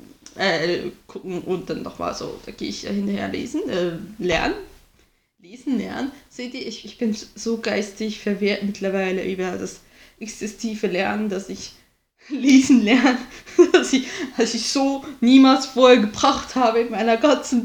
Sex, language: female, German